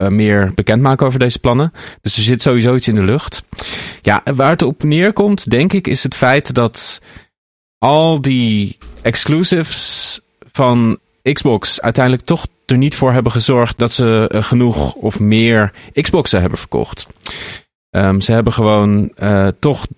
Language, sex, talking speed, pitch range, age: Dutch, male, 145 wpm, 100-120 Hz, 30-49